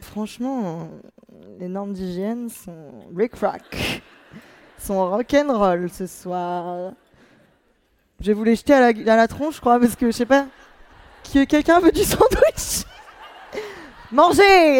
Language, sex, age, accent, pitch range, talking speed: French, female, 20-39, French, 210-290 Hz, 140 wpm